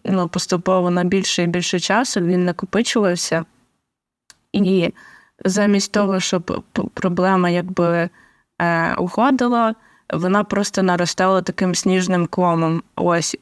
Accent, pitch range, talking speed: native, 175-200 Hz, 100 wpm